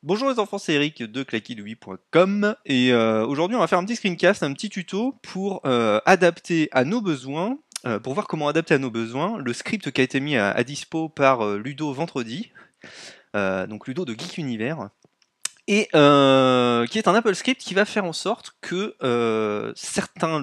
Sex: male